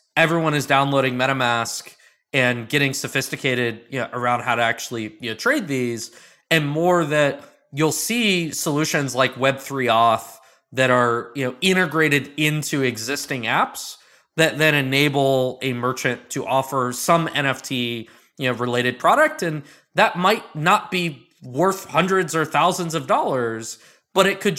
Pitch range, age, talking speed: 135-195 Hz, 20-39, 125 wpm